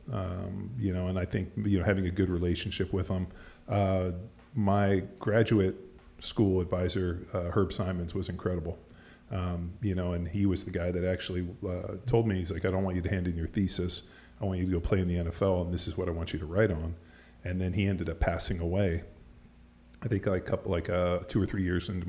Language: English